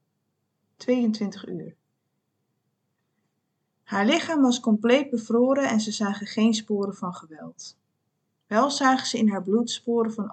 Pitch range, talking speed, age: 195-235 Hz, 130 wpm, 20-39